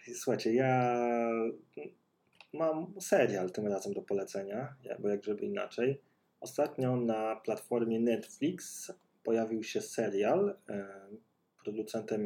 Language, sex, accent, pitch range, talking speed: Polish, male, native, 100-145 Hz, 95 wpm